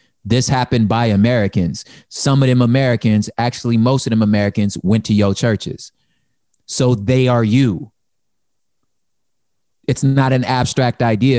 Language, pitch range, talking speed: English, 115-145 Hz, 135 wpm